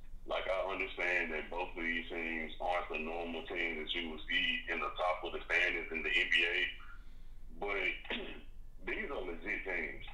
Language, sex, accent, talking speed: English, male, American, 180 wpm